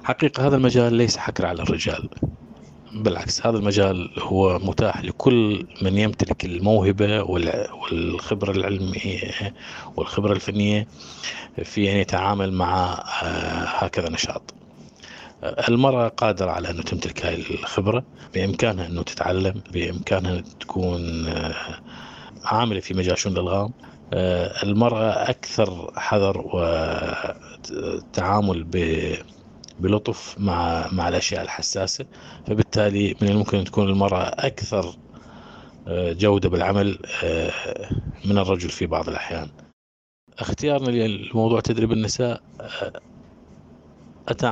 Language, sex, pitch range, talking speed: Arabic, male, 90-110 Hz, 100 wpm